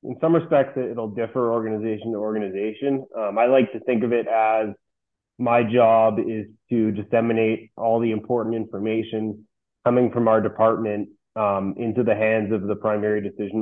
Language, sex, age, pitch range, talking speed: English, male, 20-39, 105-120 Hz, 165 wpm